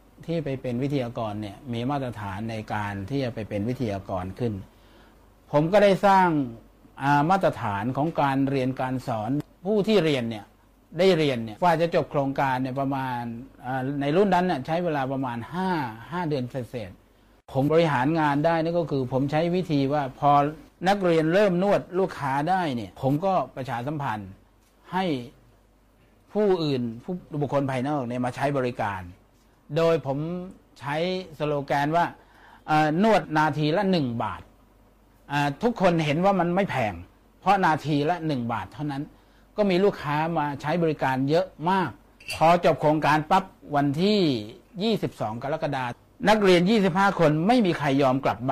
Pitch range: 120-165 Hz